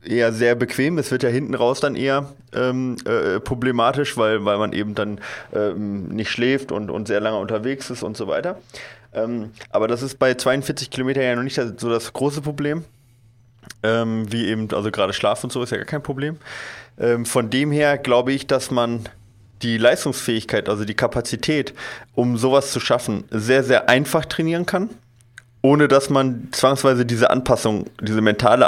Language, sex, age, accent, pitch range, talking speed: German, male, 20-39, German, 115-135 Hz, 180 wpm